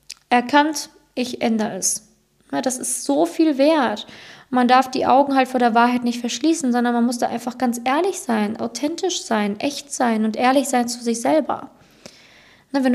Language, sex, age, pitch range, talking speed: German, female, 20-39, 235-270 Hz, 175 wpm